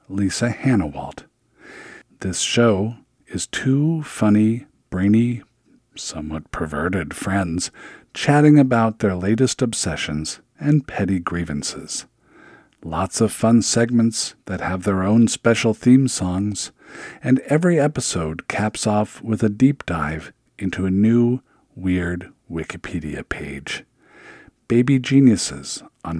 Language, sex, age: English, male, 50-69